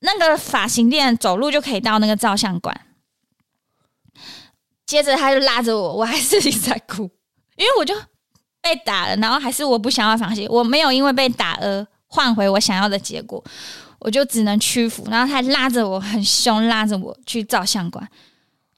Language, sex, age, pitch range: Chinese, female, 20-39, 215-275 Hz